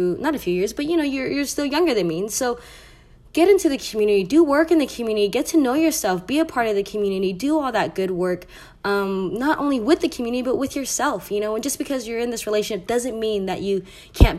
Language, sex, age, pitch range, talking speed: English, female, 20-39, 190-260 Hz, 260 wpm